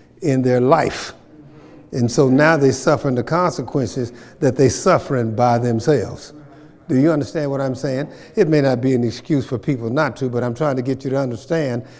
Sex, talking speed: male, 195 wpm